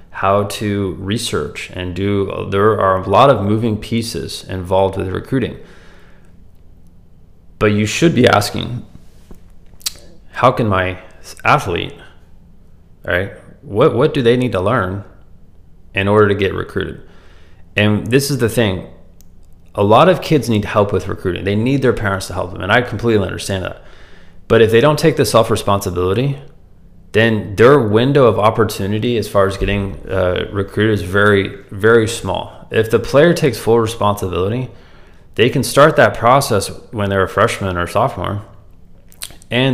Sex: male